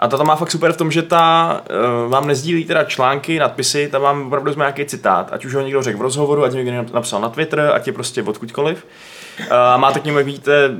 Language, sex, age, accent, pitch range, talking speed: Czech, male, 20-39, native, 115-140 Hz, 230 wpm